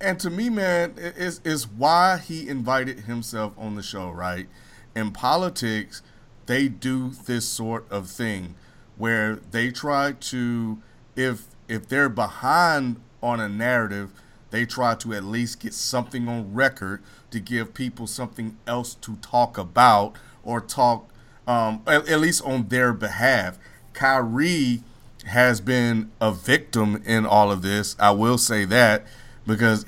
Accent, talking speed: American, 145 wpm